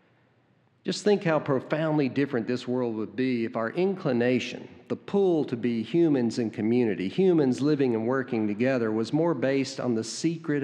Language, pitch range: English, 110-130 Hz